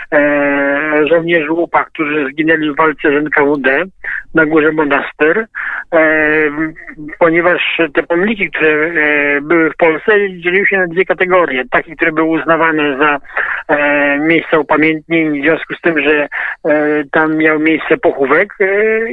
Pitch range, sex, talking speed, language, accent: 150-180 Hz, male, 140 wpm, Polish, native